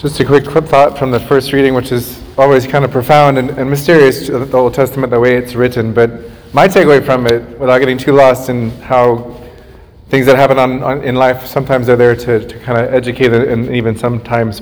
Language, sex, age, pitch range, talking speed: English, male, 30-49, 120-140 Hz, 225 wpm